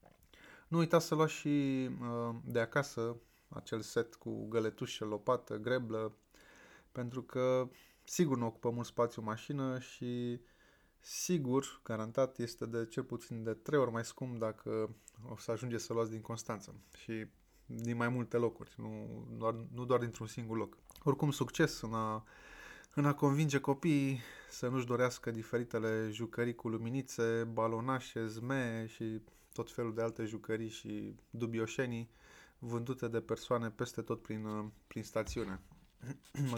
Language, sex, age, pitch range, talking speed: Romanian, male, 20-39, 115-130 Hz, 145 wpm